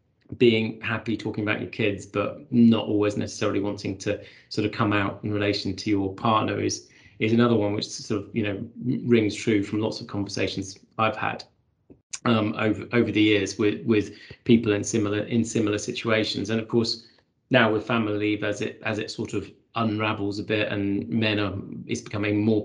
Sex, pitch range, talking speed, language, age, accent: male, 105-120 Hz, 195 wpm, English, 30-49, British